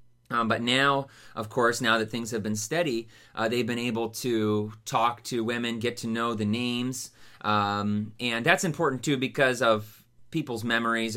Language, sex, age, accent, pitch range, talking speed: English, male, 30-49, American, 105-130 Hz, 175 wpm